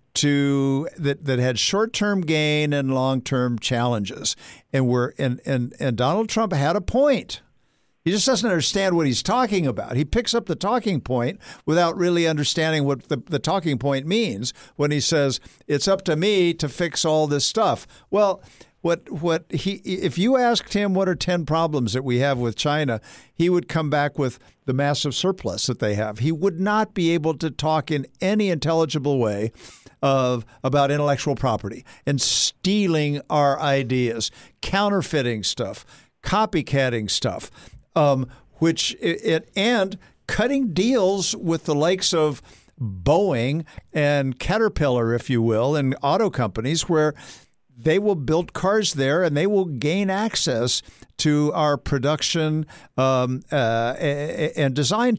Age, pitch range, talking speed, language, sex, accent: 60-79, 130-180 Hz, 155 wpm, English, male, American